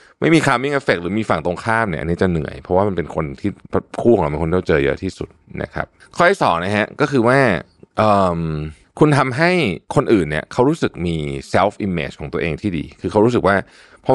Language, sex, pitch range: Thai, male, 85-130 Hz